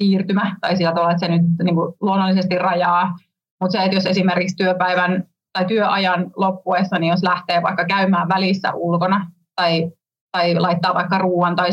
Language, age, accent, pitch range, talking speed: Finnish, 30-49, native, 170-190 Hz, 170 wpm